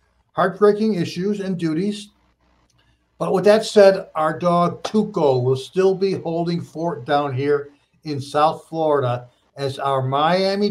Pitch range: 140-190 Hz